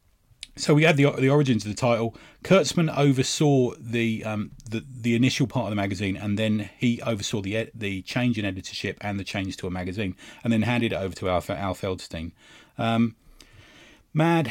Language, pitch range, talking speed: English, 100-125 Hz, 190 wpm